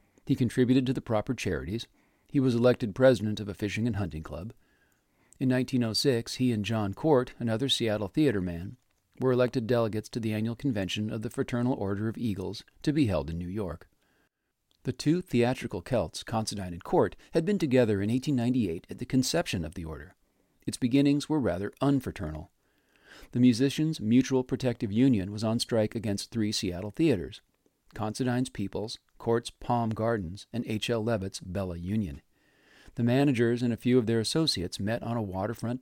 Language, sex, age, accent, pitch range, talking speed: English, male, 40-59, American, 100-130 Hz, 170 wpm